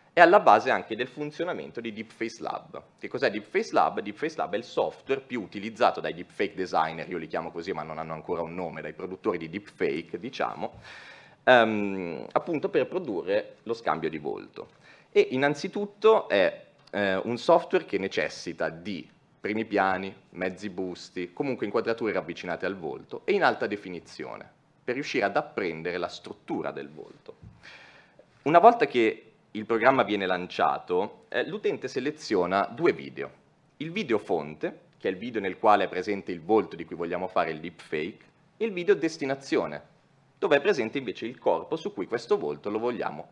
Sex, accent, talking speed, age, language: male, native, 175 wpm, 30-49, Italian